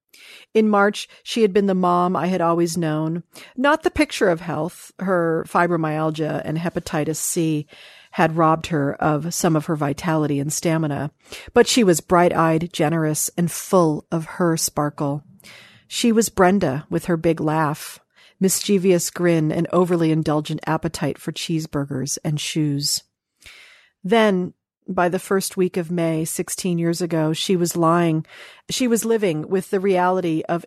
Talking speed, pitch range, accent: 155 wpm, 155-185 Hz, American